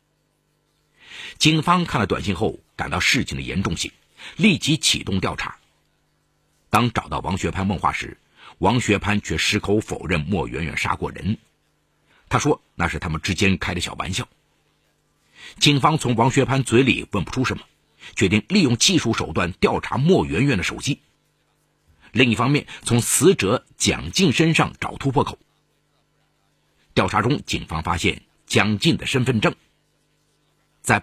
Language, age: Chinese, 50-69